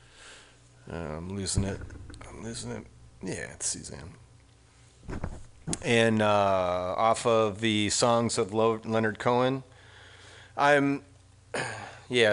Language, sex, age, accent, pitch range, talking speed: English, male, 30-49, American, 105-130 Hz, 100 wpm